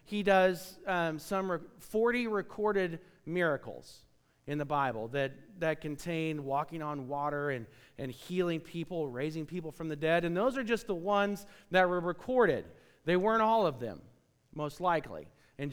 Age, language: 40-59, English